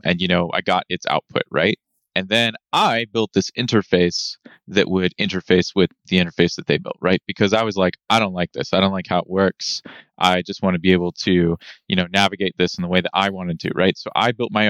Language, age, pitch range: English, 20-39, 85-105 Hz